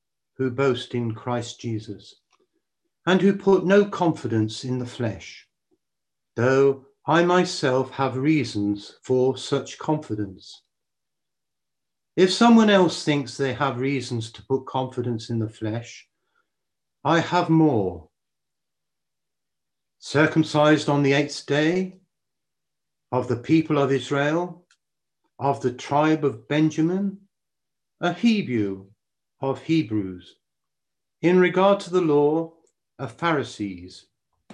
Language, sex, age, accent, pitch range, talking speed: English, male, 60-79, British, 125-165 Hz, 110 wpm